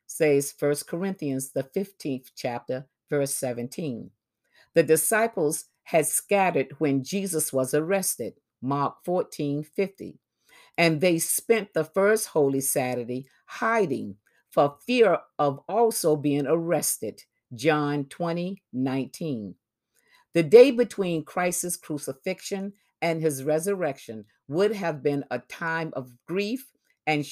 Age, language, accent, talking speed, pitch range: 50-69, English, American, 115 wpm, 140-195 Hz